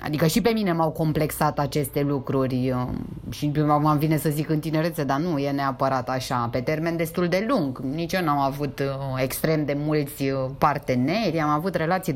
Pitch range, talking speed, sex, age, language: 145-220 Hz, 185 wpm, female, 20-39, Romanian